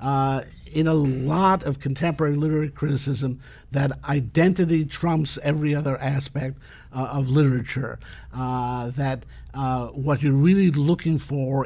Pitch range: 130-150 Hz